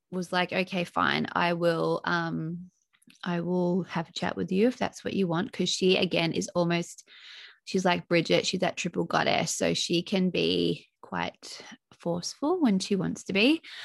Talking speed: 180 wpm